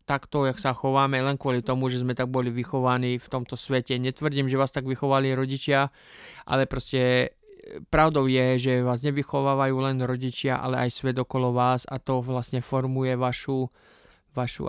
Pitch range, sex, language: 130-145 Hz, male, Slovak